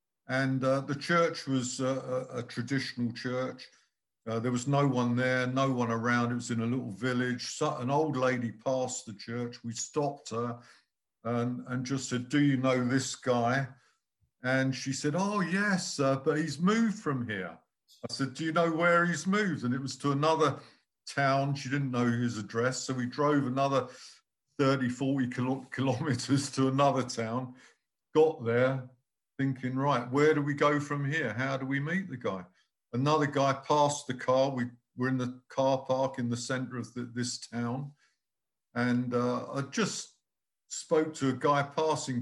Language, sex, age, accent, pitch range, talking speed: English, male, 50-69, British, 125-155 Hz, 175 wpm